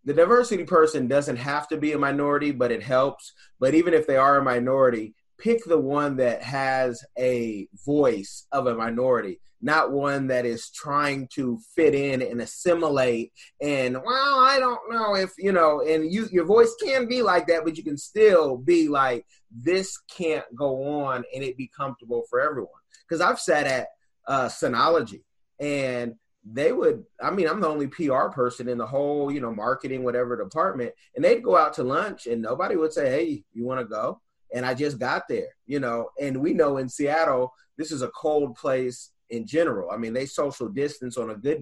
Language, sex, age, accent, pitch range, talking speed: English, male, 30-49, American, 125-170 Hz, 195 wpm